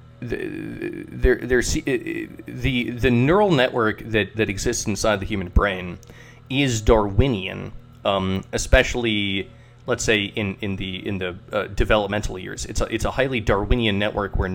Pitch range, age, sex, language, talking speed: 100-125 Hz, 30-49, male, English, 145 wpm